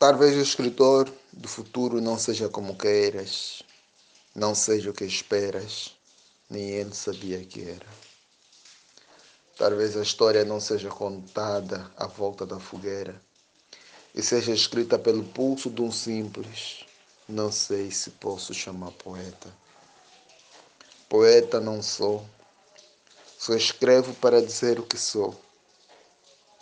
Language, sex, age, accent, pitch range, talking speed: Portuguese, male, 20-39, Brazilian, 105-120 Hz, 120 wpm